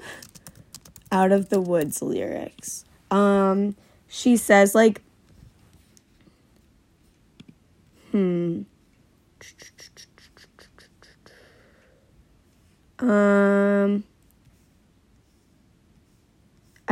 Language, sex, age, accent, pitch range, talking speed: English, female, 20-39, American, 190-225 Hz, 35 wpm